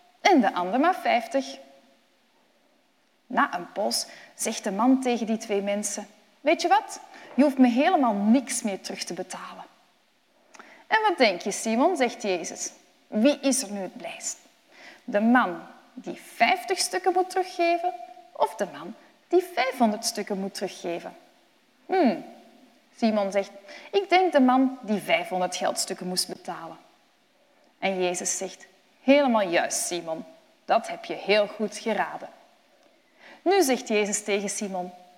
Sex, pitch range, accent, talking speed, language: female, 205-335 Hz, Dutch, 145 wpm, Dutch